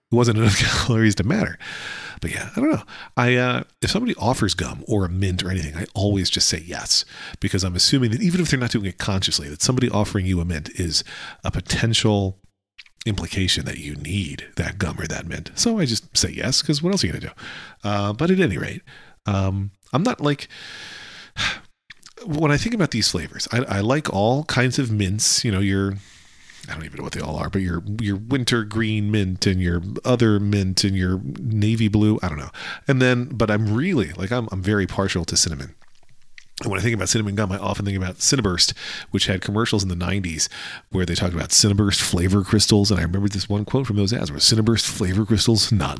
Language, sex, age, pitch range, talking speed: English, male, 40-59, 95-120 Hz, 220 wpm